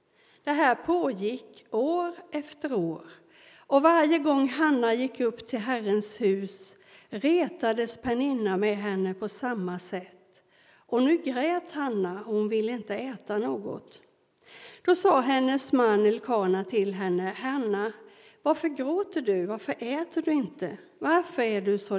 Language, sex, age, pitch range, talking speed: Swedish, female, 60-79, 205-280 Hz, 135 wpm